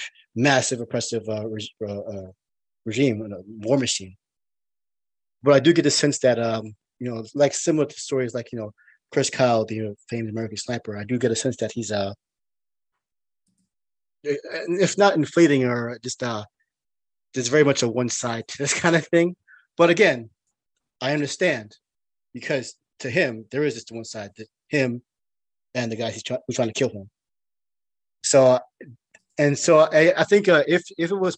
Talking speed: 185 wpm